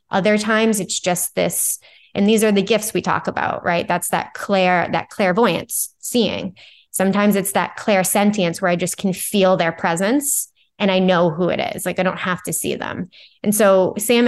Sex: female